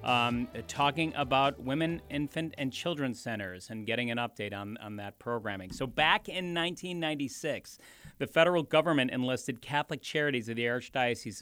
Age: 40-59